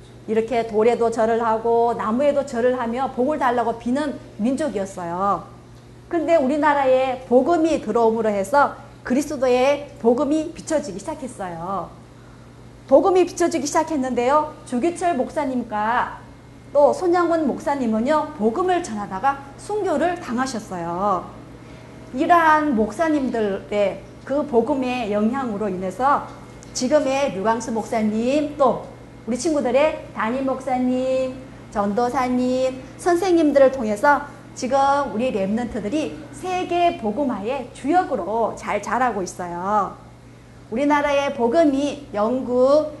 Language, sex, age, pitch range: Korean, female, 40-59, 225-300 Hz